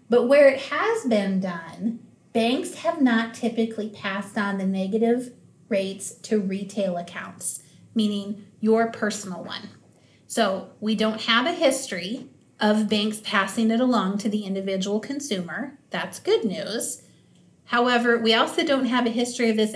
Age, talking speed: 30-49, 150 wpm